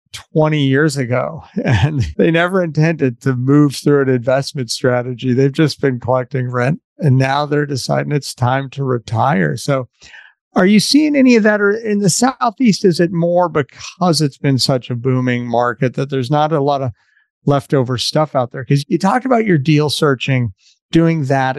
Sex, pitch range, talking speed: male, 130-160 Hz, 185 wpm